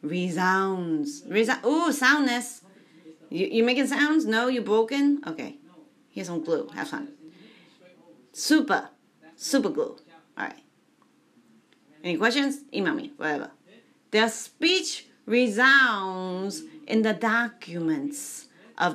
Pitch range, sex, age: 185-280 Hz, female, 40-59